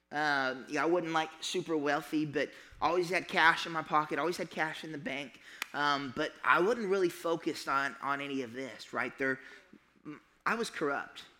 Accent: American